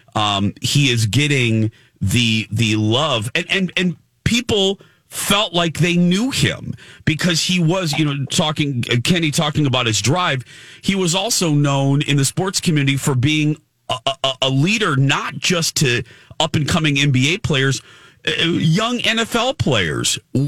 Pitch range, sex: 115-155 Hz, male